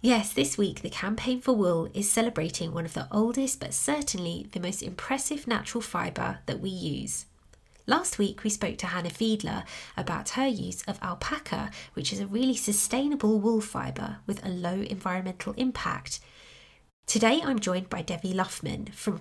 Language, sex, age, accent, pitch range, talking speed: English, female, 20-39, British, 185-235 Hz, 170 wpm